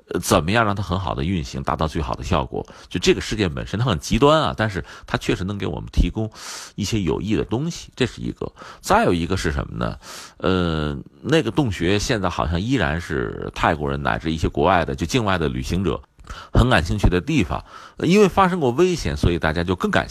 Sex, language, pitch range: male, Chinese, 80-110 Hz